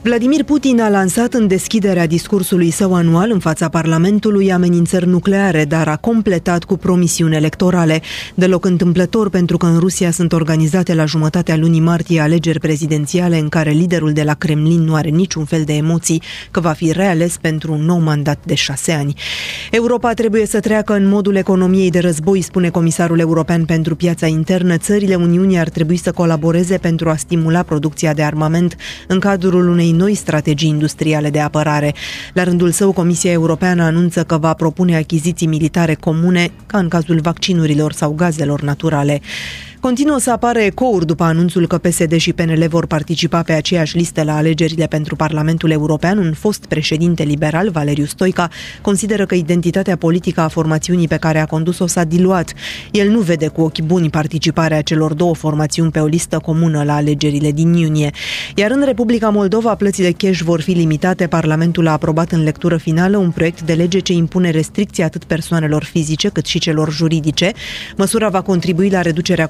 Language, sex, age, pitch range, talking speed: Romanian, female, 20-39, 160-185 Hz, 175 wpm